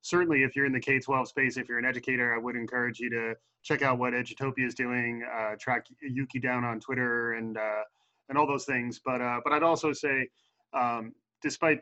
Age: 20-39